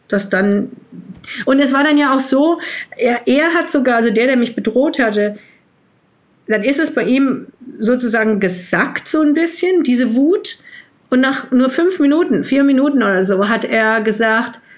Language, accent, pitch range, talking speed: German, German, 210-270 Hz, 175 wpm